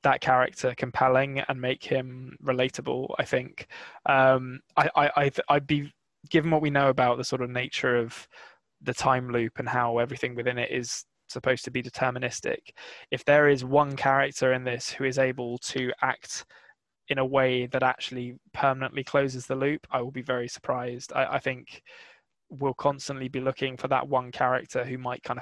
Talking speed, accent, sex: 185 wpm, British, male